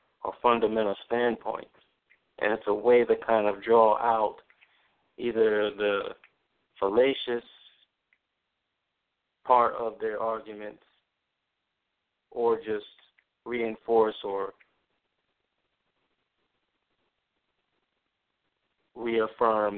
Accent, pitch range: American, 110-125 Hz